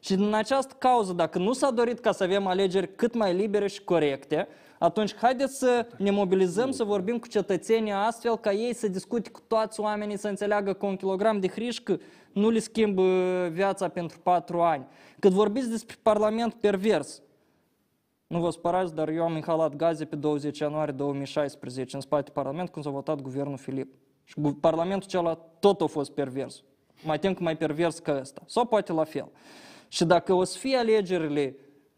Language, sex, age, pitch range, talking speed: Romanian, male, 20-39, 155-210 Hz, 180 wpm